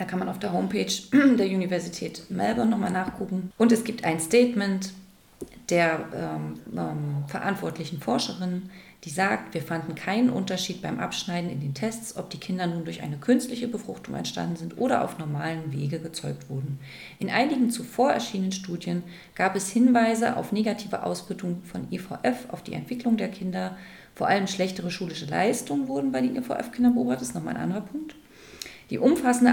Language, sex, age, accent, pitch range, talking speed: German, female, 30-49, German, 175-220 Hz, 170 wpm